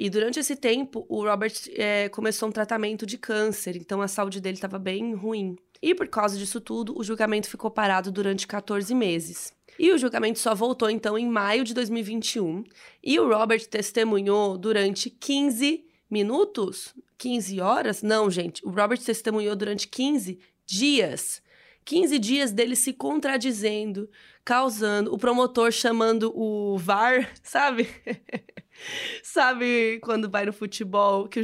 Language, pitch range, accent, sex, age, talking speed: Portuguese, 205-250 Hz, Brazilian, female, 20-39, 145 wpm